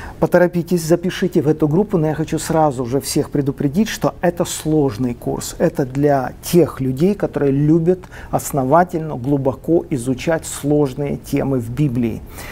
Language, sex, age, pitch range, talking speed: Russian, male, 40-59, 140-165 Hz, 140 wpm